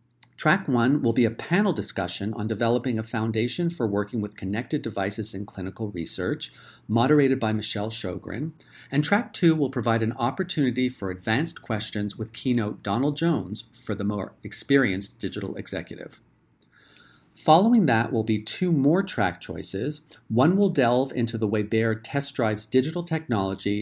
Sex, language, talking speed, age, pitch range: male, English, 155 wpm, 40-59, 105-135 Hz